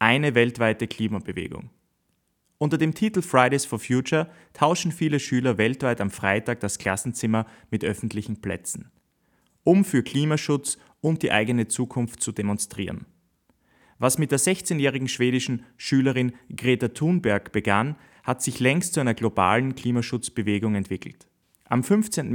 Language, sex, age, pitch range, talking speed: German, male, 30-49, 105-130 Hz, 130 wpm